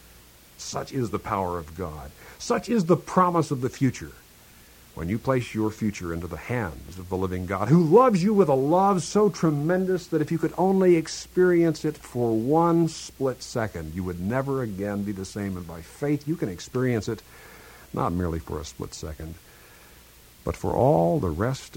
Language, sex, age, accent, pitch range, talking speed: English, male, 60-79, American, 85-145 Hz, 190 wpm